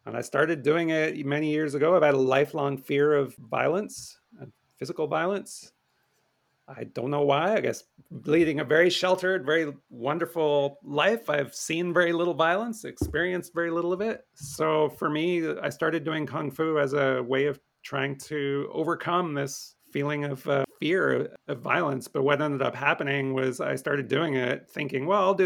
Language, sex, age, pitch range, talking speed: English, male, 30-49, 140-170 Hz, 180 wpm